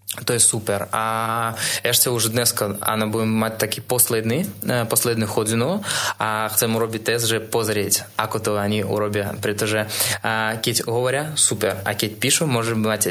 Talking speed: 150 wpm